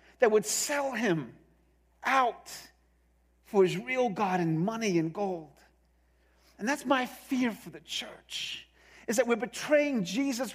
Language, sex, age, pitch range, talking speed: English, male, 50-69, 200-300 Hz, 140 wpm